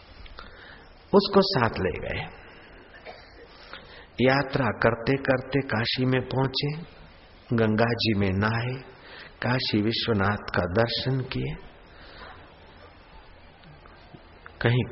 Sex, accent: male, native